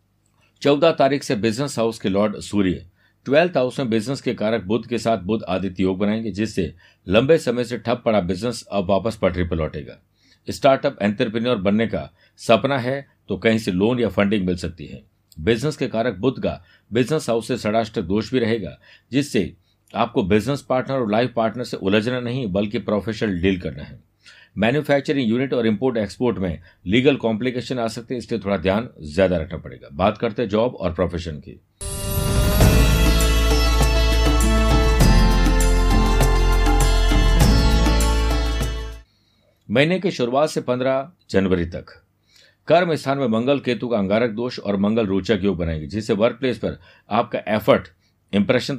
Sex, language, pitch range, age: male, Hindi, 95-125 Hz, 60-79